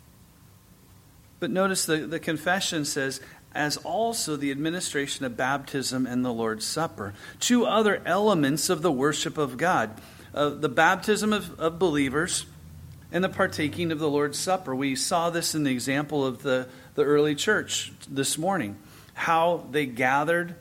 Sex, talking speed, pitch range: male, 155 wpm, 135-175 Hz